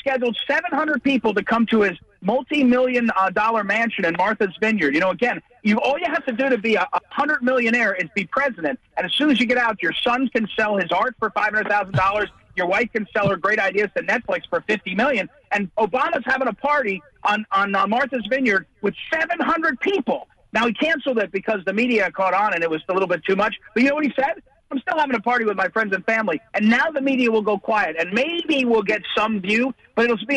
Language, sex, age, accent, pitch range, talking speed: English, male, 40-59, American, 210-270 Hz, 245 wpm